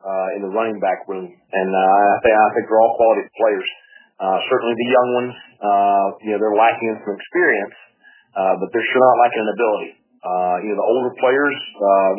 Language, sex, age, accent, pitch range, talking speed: English, male, 40-59, American, 100-125 Hz, 215 wpm